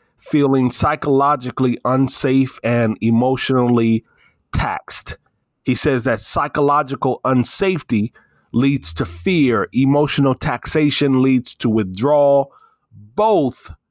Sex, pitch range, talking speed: male, 120-150 Hz, 85 wpm